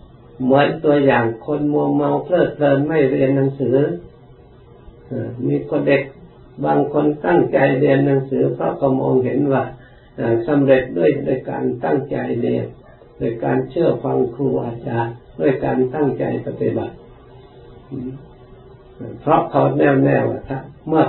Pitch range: 120-140 Hz